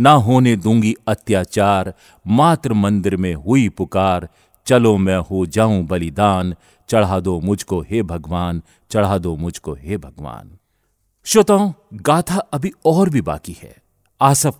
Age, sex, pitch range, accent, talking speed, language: 40-59, male, 95-130 Hz, native, 130 wpm, Hindi